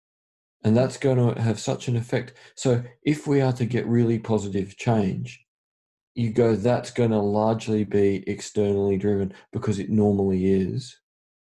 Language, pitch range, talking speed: English, 100-125 Hz, 160 wpm